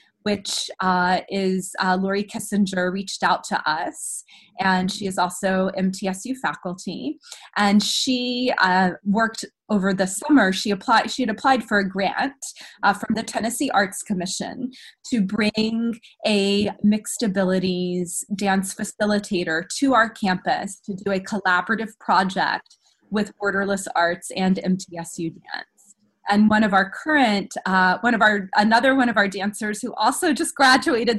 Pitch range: 190-235 Hz